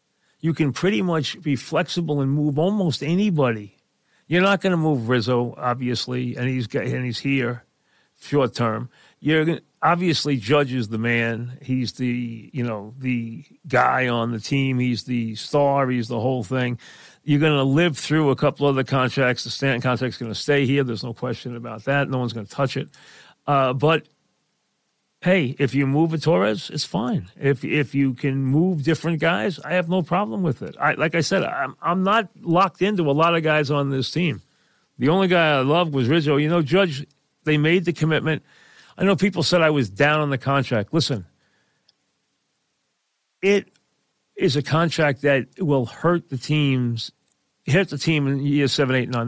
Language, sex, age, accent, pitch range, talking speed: English, male, 40-59, American, 125-165 Hz, 190 wpm